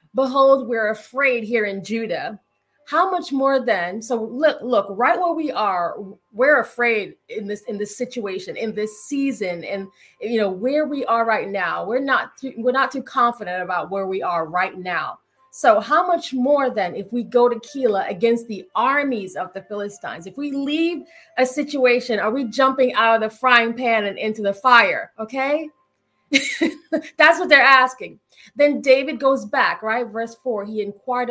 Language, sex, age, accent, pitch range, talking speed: English, female, 30-49, American, 200-265 Hz, 180 wpm